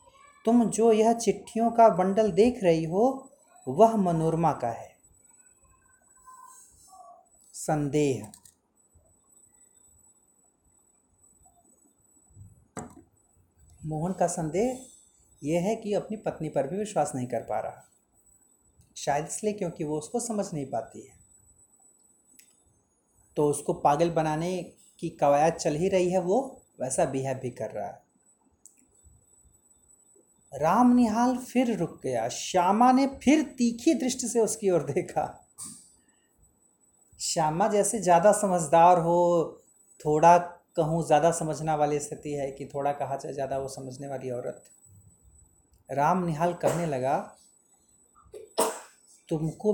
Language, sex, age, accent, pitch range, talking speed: Hindi, male, 30-49, native, 145-225 Hz, 115 wpm